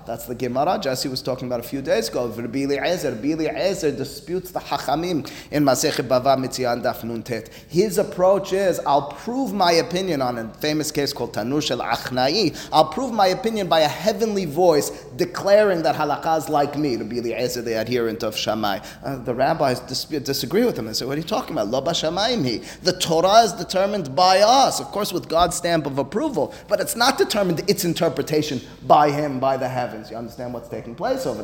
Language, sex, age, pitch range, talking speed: English, male, 30-49, 125-175 Hz, 185 wpm